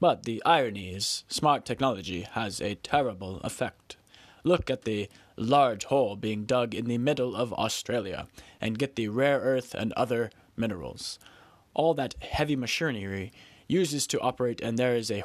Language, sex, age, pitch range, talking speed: English, male, 20-39, 105-130 Hz, 160 wpm